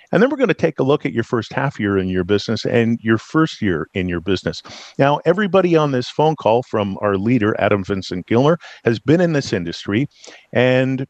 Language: English